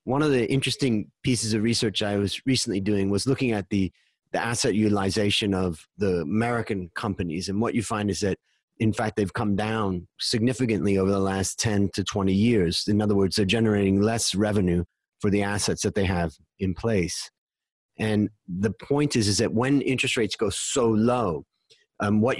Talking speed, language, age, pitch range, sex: 190 wpm, English, 30-49, 100-120 Hz, male